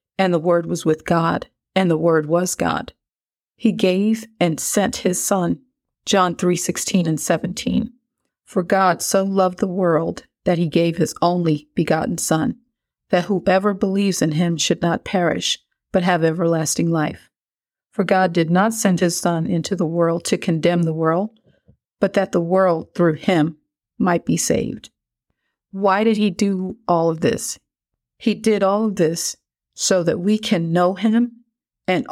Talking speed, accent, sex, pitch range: 165 wpm, American, female, 170-210 Hz